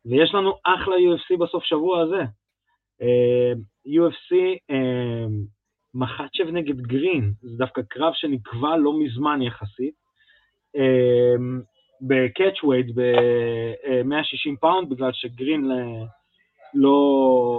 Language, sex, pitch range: Hebrew, male, 115-150 Hz